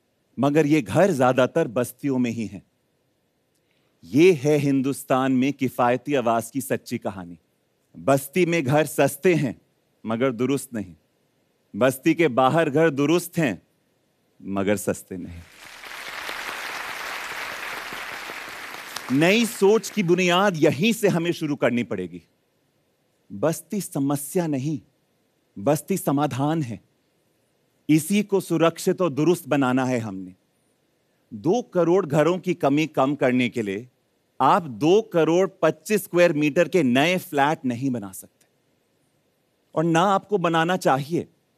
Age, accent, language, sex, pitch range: 40-59, Indian, Korean, male, 125-170 Hz